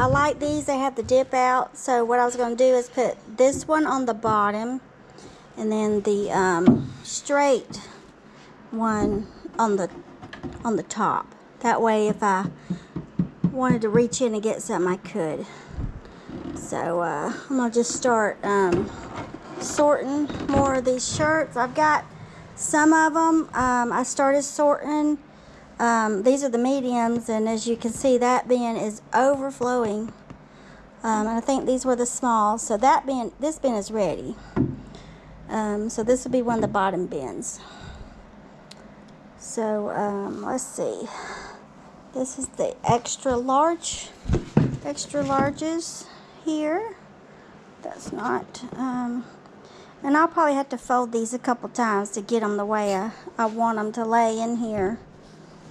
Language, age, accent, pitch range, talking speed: English, 50-69, American, 215-275 Hz, 155 wpm